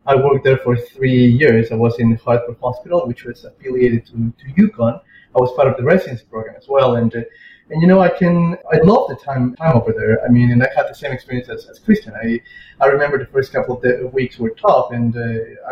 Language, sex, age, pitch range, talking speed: English, male, 30-49, 115-145 Hz, 235 wpm